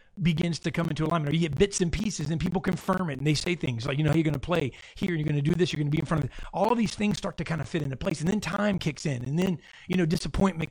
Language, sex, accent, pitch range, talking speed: English, male, American, 150-185 Hz, 355 wpm